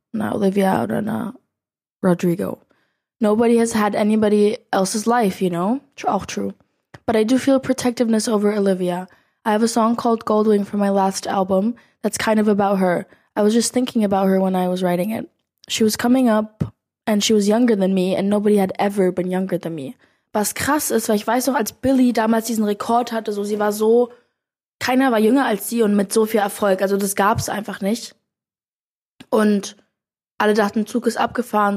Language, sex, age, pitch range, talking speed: German, female, 20-39, 200-230 Hz, 195 wpm